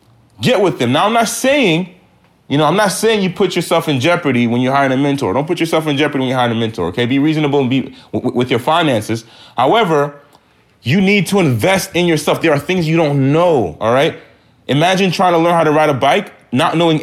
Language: English